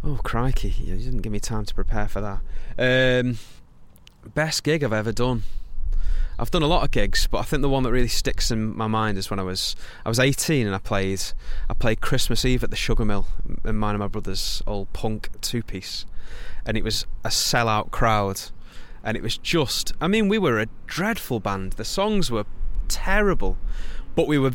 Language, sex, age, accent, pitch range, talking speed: English, male, 20-39, British, 100-125 Hz, 205 wpm